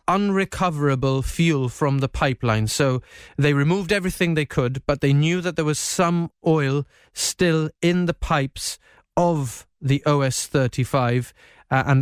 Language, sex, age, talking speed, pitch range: English, male, 30-49, 135 wpm, 140-165 Hz